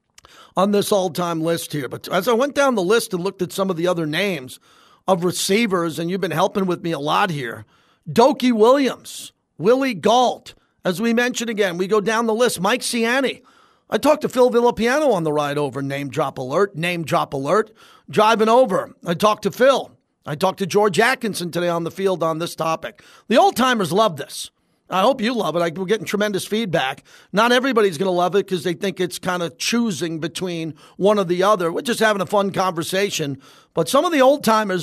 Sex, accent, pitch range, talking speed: male, American, 170-215 Hz, 210 wpm